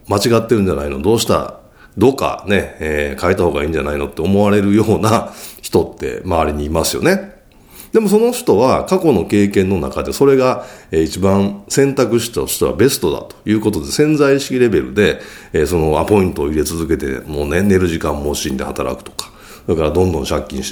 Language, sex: Japanese, male